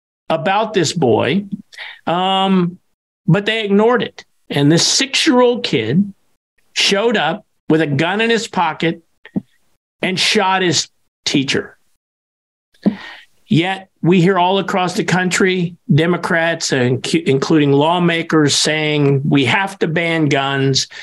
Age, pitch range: 50-69, 150-185 Hz